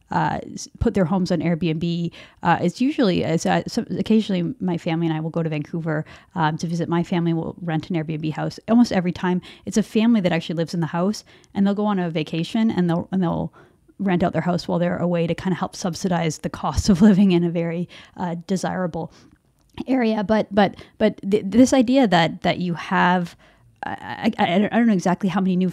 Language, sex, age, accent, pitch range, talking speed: English, female, 30-49, American, 170-195 Hz, 220 wpm